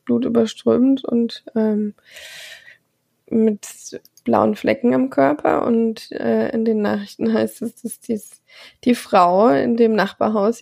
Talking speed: 125 wpm